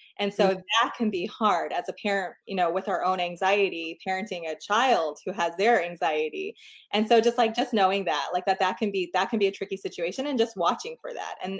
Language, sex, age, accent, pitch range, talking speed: English, female, 20-39, American, 175-210 Hz, 240 wpm